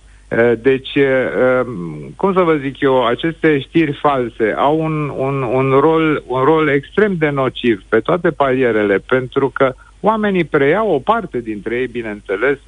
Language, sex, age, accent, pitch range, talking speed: Romanian, male, 50-69, native, 120-165 Hz, 135 wpm